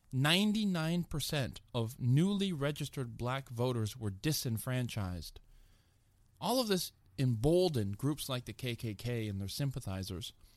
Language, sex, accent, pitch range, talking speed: English, male, American, 105-145 Hz, 100 wpm